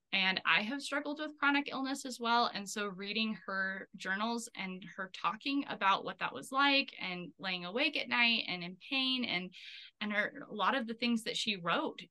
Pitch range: 190-225 Hz